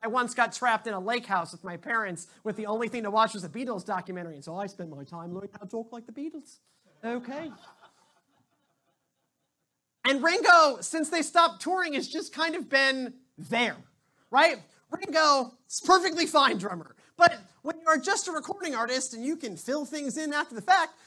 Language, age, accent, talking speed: English, 30-49, American, 200 wpm